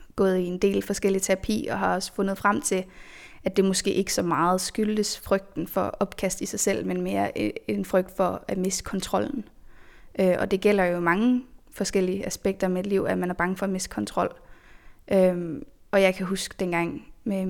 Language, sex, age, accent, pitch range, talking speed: Danish, female, 20-39, native, 185-200 Hz, 195 wpm